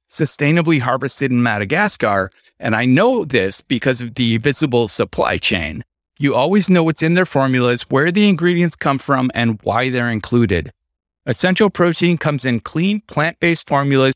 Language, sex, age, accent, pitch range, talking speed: English, male, 30-49, American, 120-165 Hz, 155 wpm